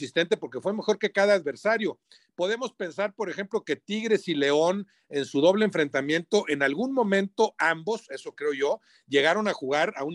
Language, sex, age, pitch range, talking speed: Spanish, male, 50-69, 155-215 Hz, 175 wpm